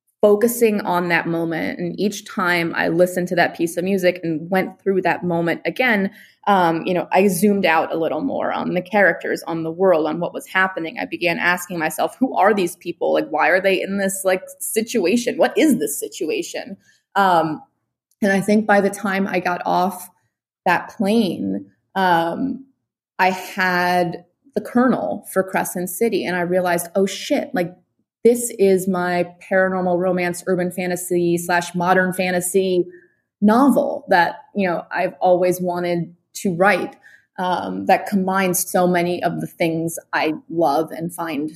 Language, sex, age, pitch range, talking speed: English, female, 20-39, 175-200 Hz, 170 wpm